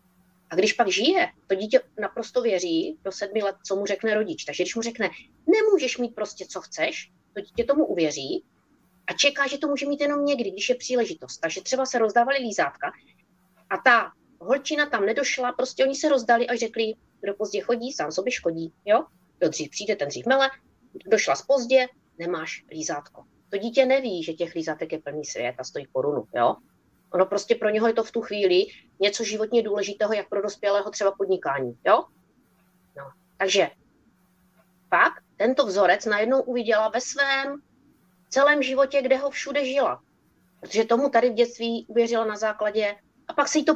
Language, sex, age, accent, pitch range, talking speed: Czech, female, 30-49, native, 185-270 Hz, 180 wpm